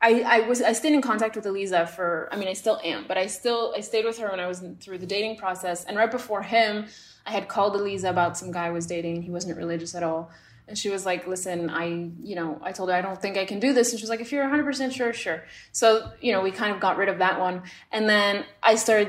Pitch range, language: 195-250 Hz, English